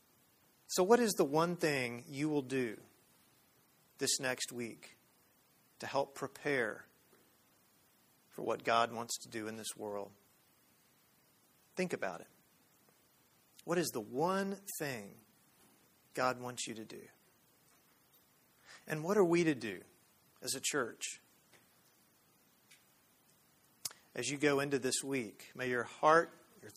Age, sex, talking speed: 40-59, male, 125 wpm